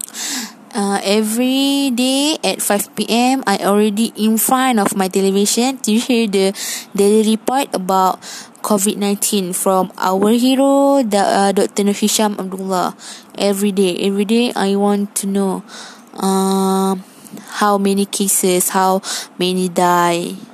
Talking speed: 125 wpm